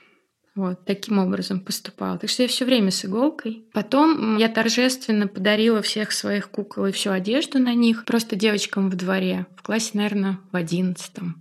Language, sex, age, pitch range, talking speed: Russian, female, 20-39, 195-230 Hz, 170 wpm